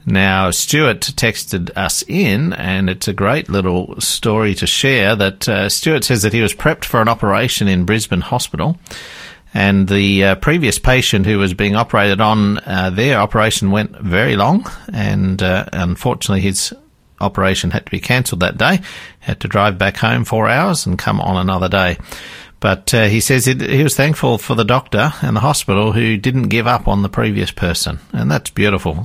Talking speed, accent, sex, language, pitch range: 185 wpm, Australian, male, English, 95-115 Hz